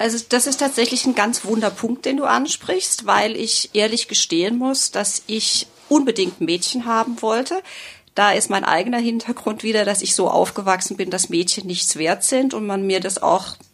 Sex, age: female, 40-59